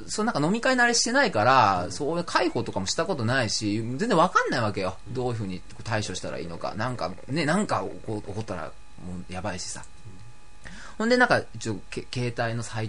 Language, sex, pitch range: Japanese, male, 100-155 Hz